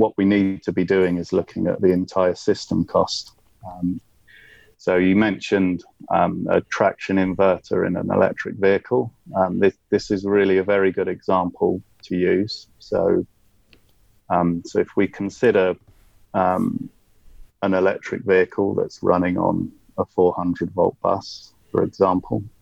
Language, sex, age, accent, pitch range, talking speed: English, male, 30-49, British, 95-110 Hz, 150 wpm